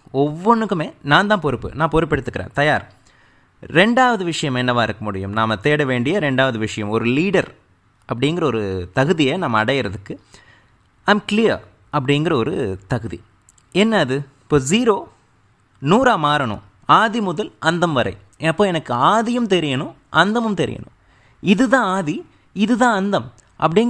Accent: native